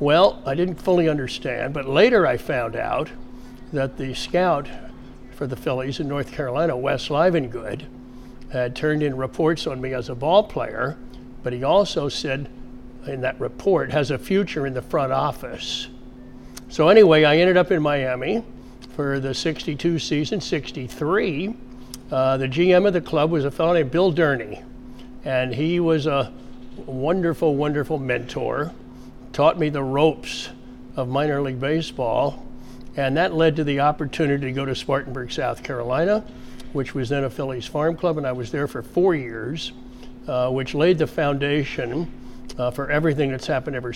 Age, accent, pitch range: 60-79, American, 125-155 Hz